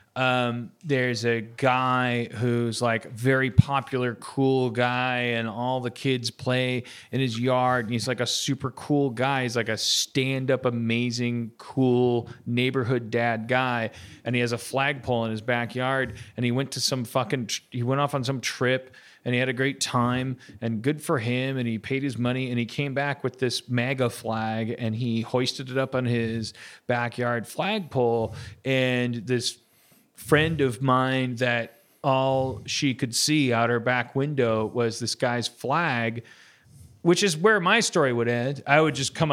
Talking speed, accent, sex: 175 wpm, American, male